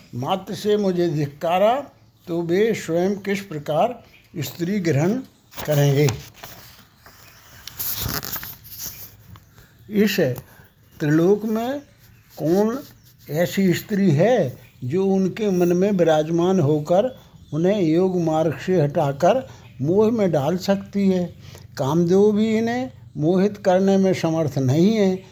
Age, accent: 60-79, native